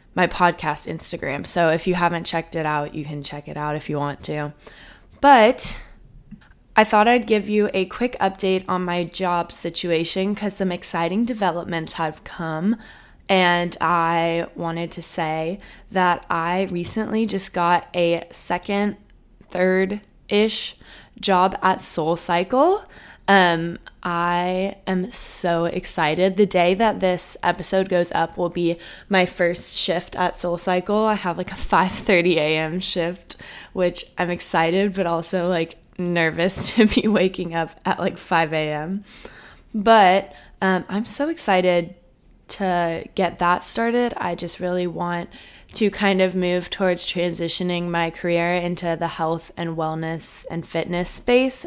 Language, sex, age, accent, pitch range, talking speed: English, female, 20-39, American, 170-195 Hz, 145 wpm